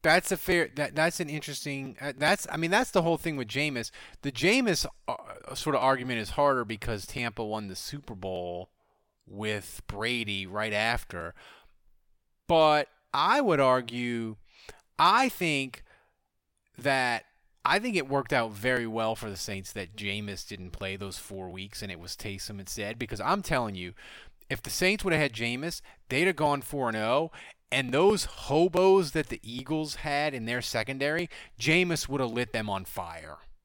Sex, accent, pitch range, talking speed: male, American, 110-155 Hz, 180 wpm